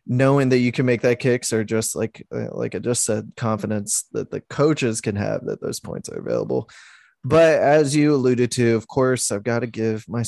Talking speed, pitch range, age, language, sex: 220 wpm, 110-130 Hz, 20-39, English, male